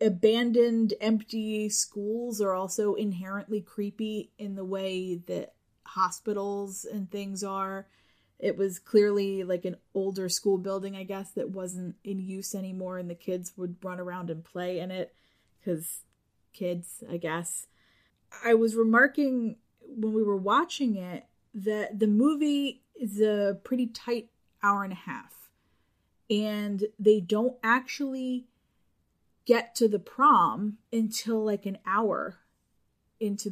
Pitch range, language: 190-230 Hz, English